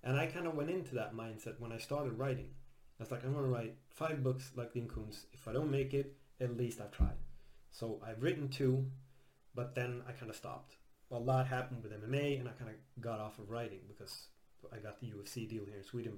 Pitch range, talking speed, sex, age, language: 110-130 Hz, 240 wpm, male, 30-49, English